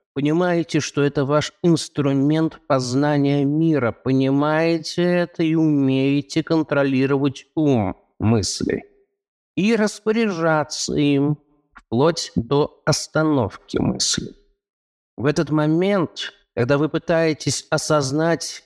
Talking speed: 90 wpm